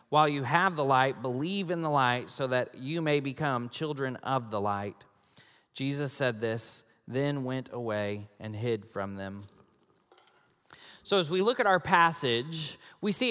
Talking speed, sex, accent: 165 wpm, male, American